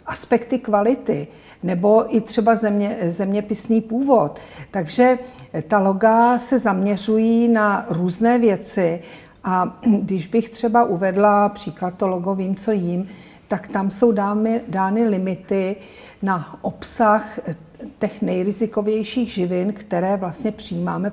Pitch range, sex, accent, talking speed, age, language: 180-215 Hz, female, native, 115 wpm, 50-69, Czech